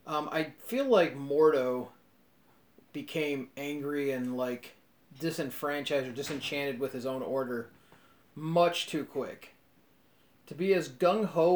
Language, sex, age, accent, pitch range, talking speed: English, male, 30-49, American, 125-155 Hz, 120 wpm